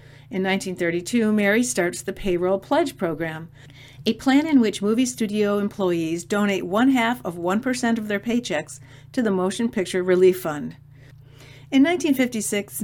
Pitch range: 170-220 Hz